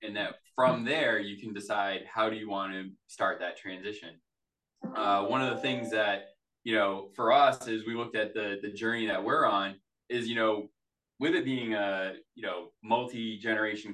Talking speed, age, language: 200 wpm, 20-39, English